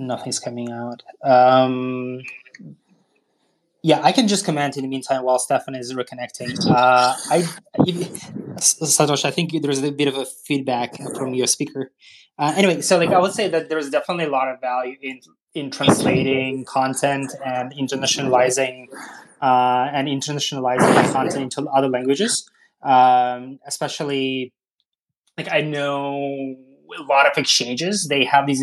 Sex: male